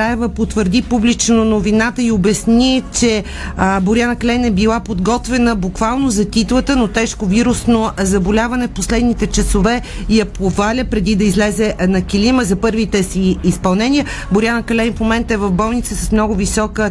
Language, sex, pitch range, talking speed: Bulgarian, female, 195-225 Hz, 150 wpm